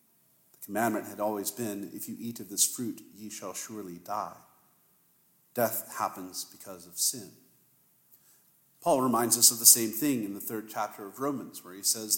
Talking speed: 170 wpm